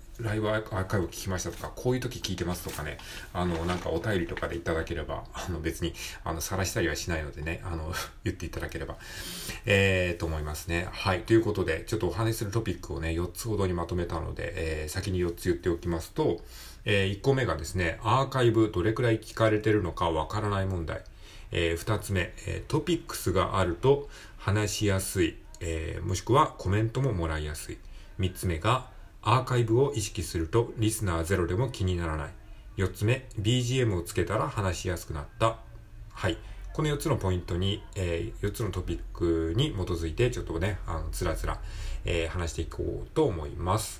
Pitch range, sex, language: 85-115 Hz, male, Japanese